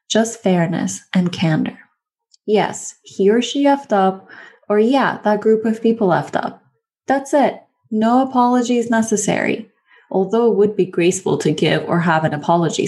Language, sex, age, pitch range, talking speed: English, female, 10-29, 180-235 Hz, 165 wpm